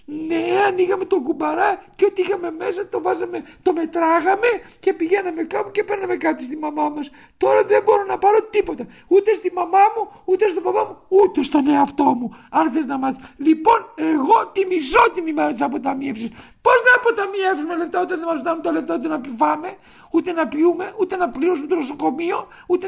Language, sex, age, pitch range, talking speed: Greek, male, 50-69, 335-430 Hz, 190 wpm